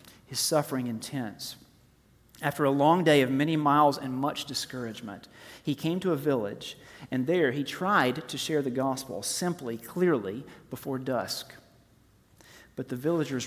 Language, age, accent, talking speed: English, 40-59, American, 145 wpm